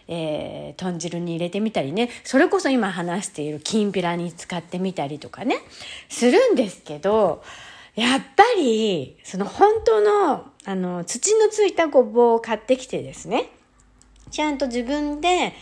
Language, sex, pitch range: Japanese, female, 185-295 Hz